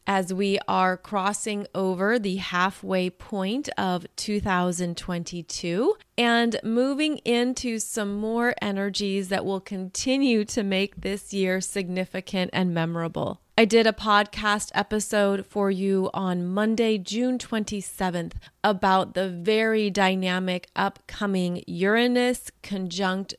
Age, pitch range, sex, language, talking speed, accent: 30-49, 185-220 Hz, female, English, 115 wpm, American